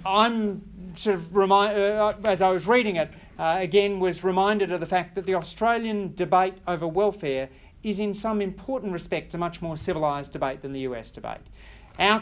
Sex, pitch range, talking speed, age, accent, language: male, 135-195 Hz, 185 wpm, 40-59, Australian, English